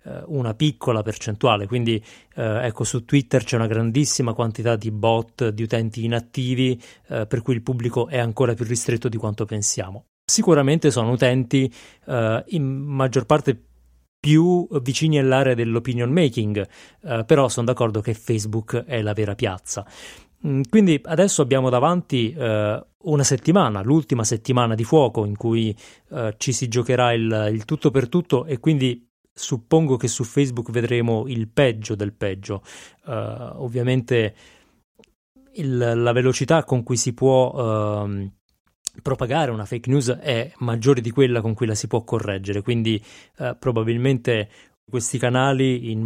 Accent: native